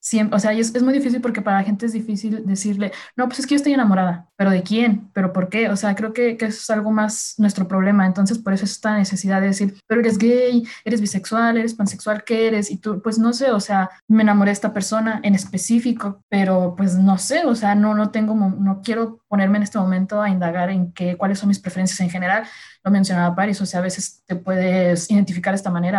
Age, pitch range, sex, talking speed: 20-39, 190-215 Hz, female, 245 wpm